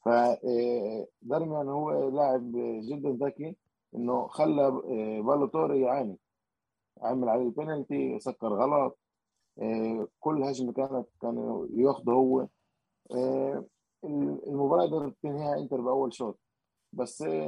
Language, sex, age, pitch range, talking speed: Arabic, male, 20-39, 125-145 Hz, 100 wpm